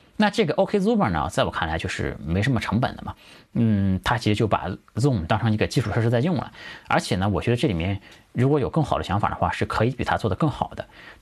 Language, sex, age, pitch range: Chinese, male, 30-49, 100-150 Hz